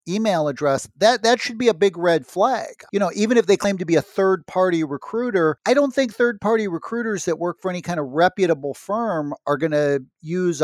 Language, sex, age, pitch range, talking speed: English, male, 40-59, 140-175 Hz, 215 wpm